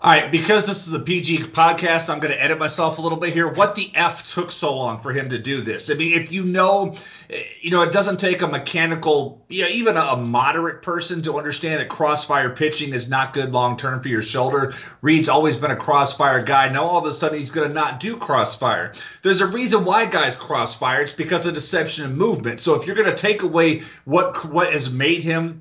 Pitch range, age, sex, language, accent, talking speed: 150-175 Hz, 30-49, male, English, American, 225 wpm